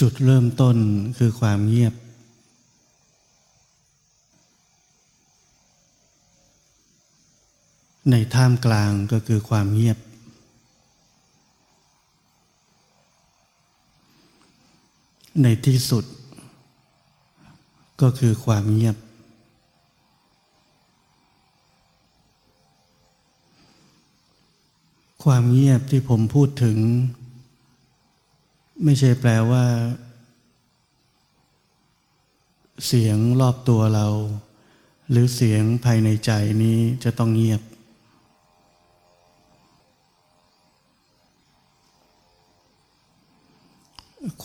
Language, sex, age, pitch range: Thai, male, 60-79, 110-125 Hz